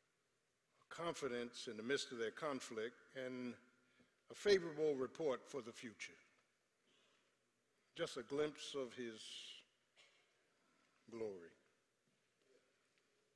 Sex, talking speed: male, 90 wpm